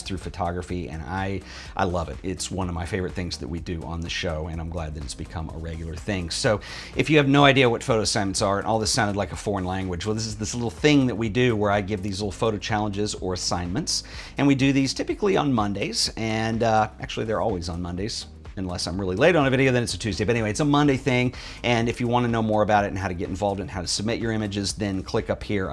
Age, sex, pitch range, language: 40-59, male, 90-120 Hz, English